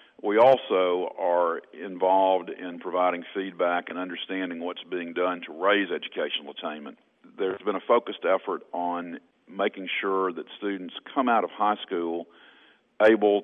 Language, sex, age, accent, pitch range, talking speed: English, male, 50-69, American, 85-95 Hz, 145 wpm